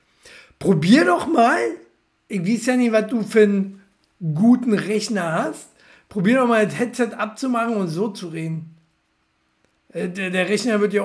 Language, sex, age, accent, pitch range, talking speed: German, male, 60-79, German, 160-215 Hz, 150 wpm